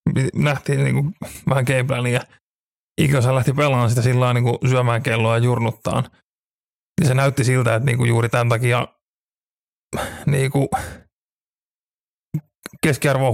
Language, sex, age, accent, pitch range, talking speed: Finnish, male, 30-49, native, 120-140 Hz, 135 wpm